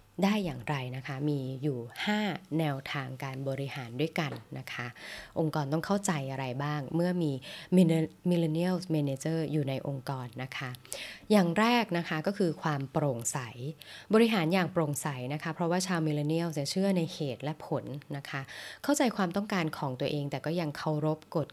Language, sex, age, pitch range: Thai, female, 20-39, 145-180 Hz